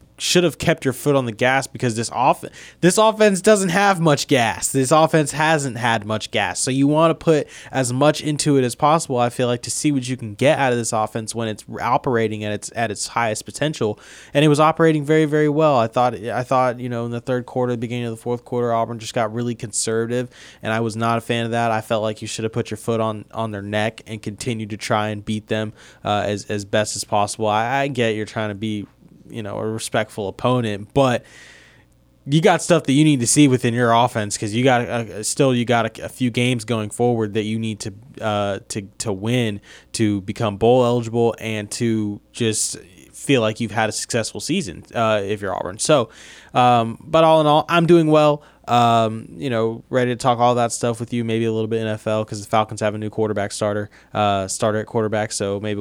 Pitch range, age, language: 110-130 Hz, 20-39, English